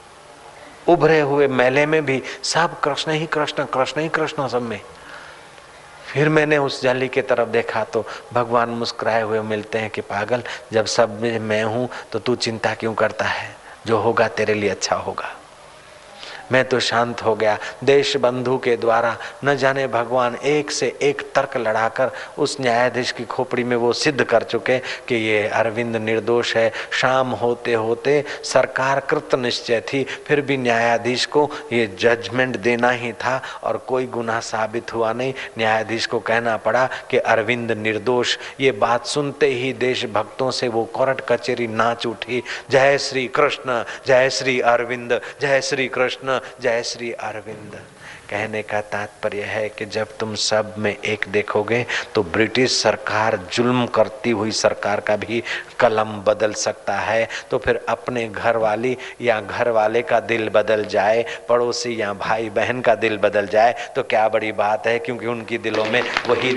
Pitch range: 110-130 Hz